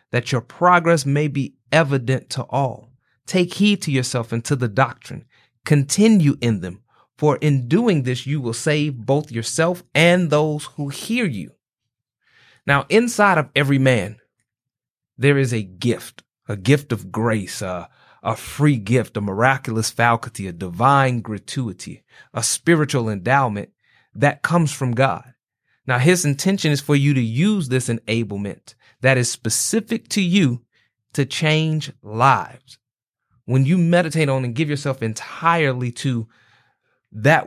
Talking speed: 145 wpm